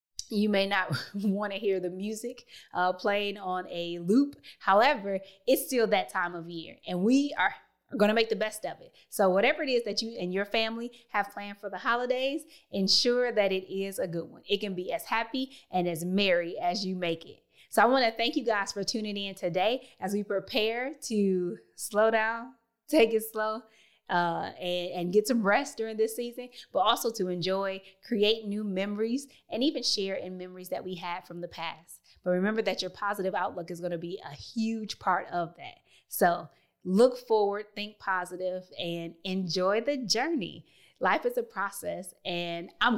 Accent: American